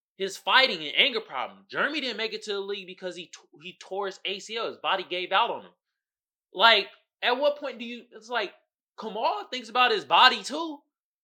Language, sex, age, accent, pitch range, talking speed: English, male, 20-39, American, 150-230 Hz, 210 wpm